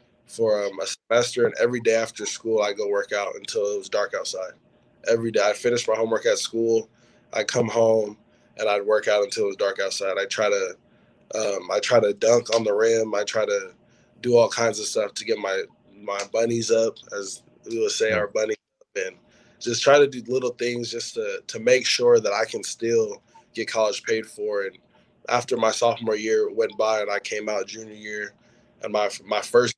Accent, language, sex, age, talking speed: American, English, male, 20-39, 215 wpm